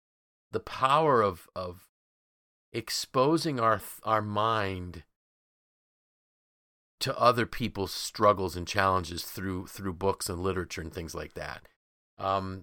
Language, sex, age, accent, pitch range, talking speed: English, male, 40-59, American, 95-120 Hz, 115 wpm